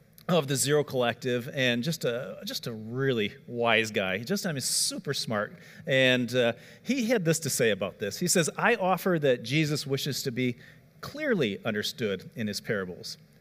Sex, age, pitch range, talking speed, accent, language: male, 40-59, 125-170 Hz, 185 wpm, American, English